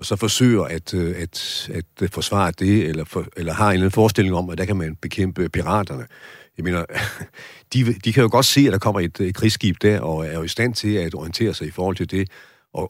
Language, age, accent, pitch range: Danish, 60-79, native, 90-115 Hz